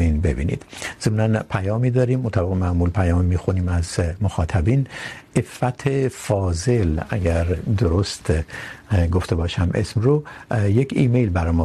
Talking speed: 115 wpm